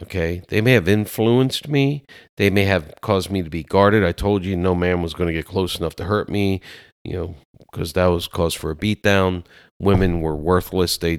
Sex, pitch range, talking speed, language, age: male, 80-100 Hz, 220 wpm, English, 40-59